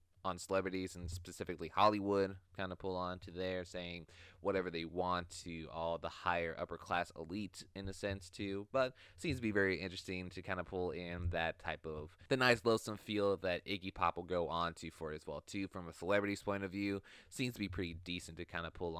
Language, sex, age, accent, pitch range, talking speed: English, male, 20-39, American, 90-100 Hz, 225 wpm